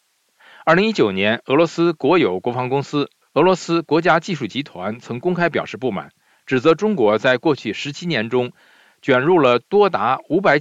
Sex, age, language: male, 50-69, Chinese